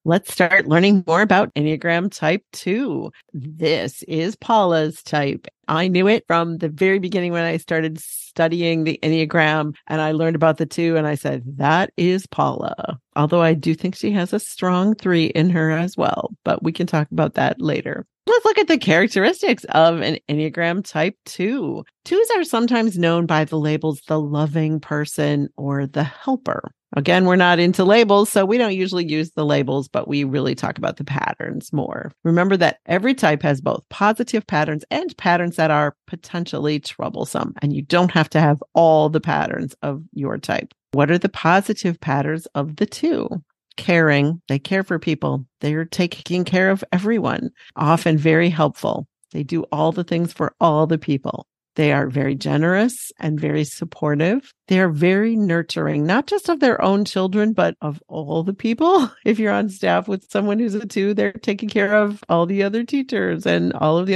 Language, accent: English, American